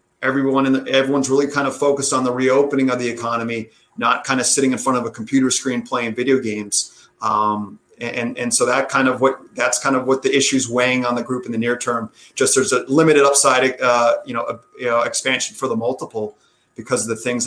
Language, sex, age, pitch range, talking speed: English, male, 30-49, 120-140 Hz, 230 wpm